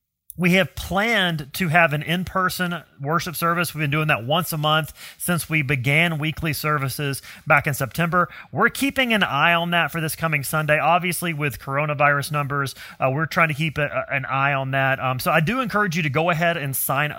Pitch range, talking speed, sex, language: 135-170 Hz, 205 wpm, male, English